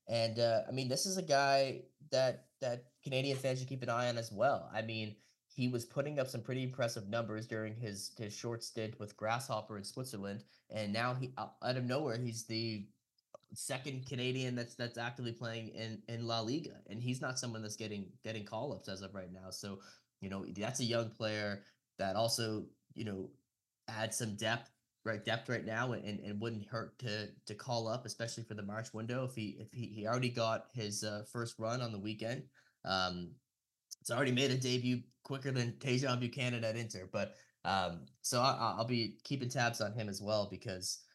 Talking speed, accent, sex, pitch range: 205 wpm, American, male, 105-125 Hz